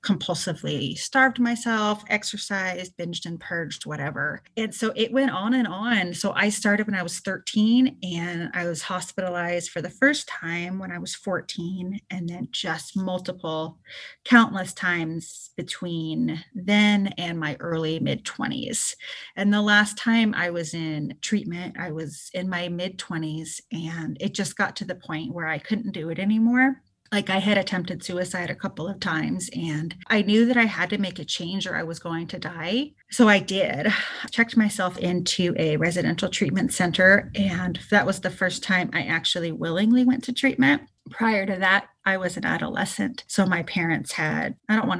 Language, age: English, 30-49